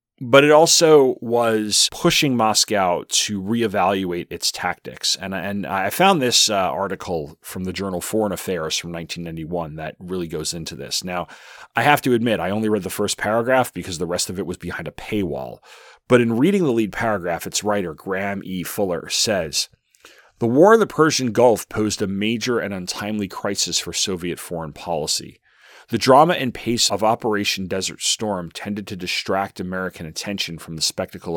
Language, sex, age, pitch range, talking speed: English, male, 30-49, 90-115 Hz, 180 wpm